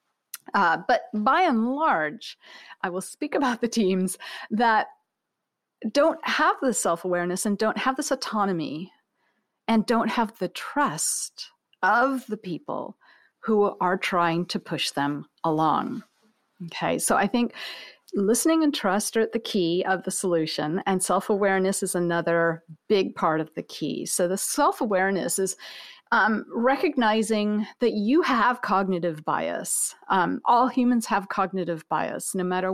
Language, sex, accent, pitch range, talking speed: English, female, American, 180-235 Hz, 140 wpm